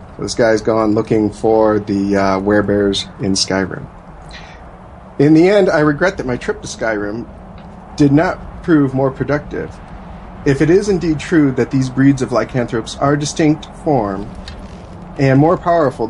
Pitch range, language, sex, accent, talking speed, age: 105-145 Hz, English, male, American, 155 wpm, 40-59